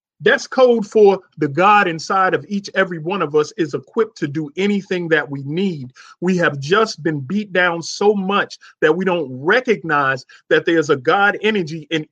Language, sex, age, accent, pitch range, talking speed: English, male, 40-59, American, 170-225 Hz, 190 wpm